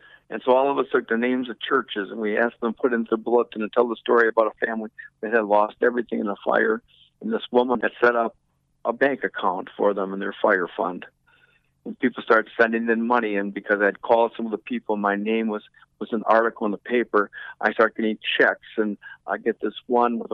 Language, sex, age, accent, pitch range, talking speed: English, male, 50-69, American, 95-120 Hz, 240 wpm